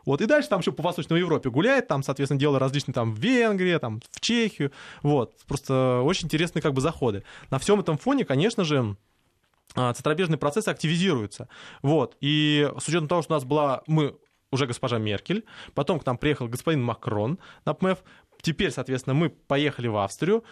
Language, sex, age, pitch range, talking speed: Russian, male, 20-39, 130-170 Hz, 175 wpm